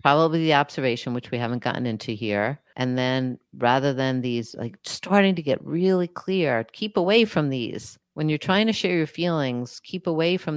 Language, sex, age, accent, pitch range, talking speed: English, female, 50-69, American, 125-165 Hz, 195 wpm